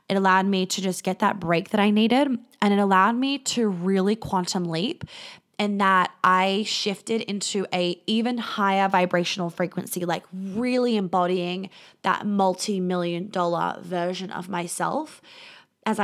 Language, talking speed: English, 145 wpm